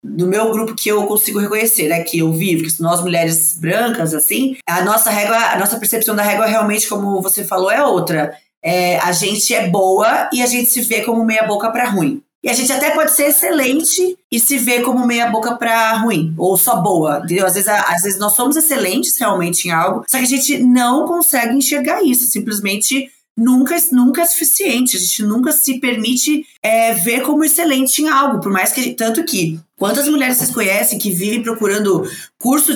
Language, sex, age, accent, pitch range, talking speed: Portuguese, female, 20-39, Brazilian, 195-255 Hz, 200 wpm